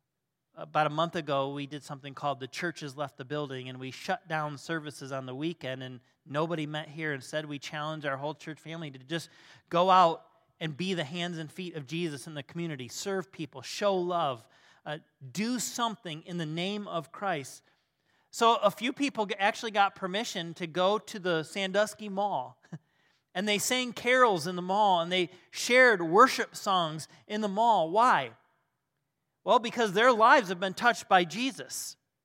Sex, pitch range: male, 150-215 Hz